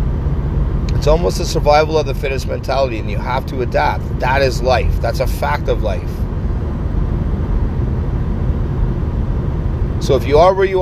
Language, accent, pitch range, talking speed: English, American, 80-120 Hz, 145 wpm